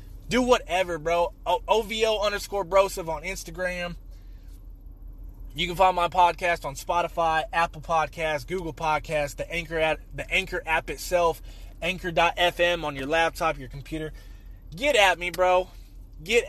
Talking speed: 135 wpm